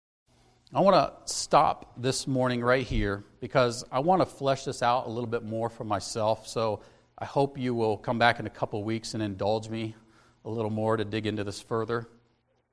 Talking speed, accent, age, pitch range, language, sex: 210 wpm, American, 40-59, 120-170 Hz, English, male